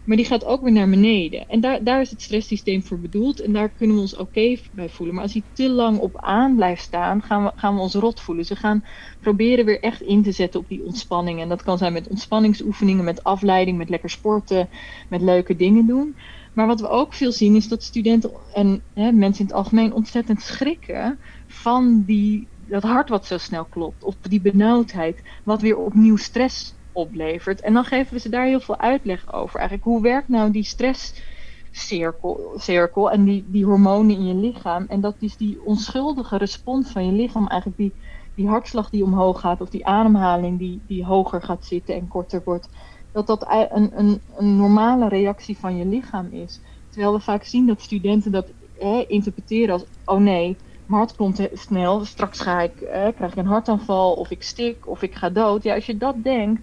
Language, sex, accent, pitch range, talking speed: Dutch, female, Dutch, 190-225 Hz, 205 wpm